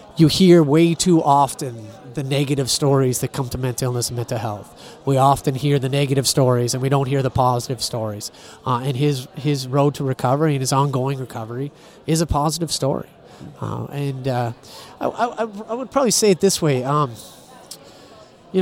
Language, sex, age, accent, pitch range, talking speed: English, male, 30-49, American, 125-150 Hz, 185 wpm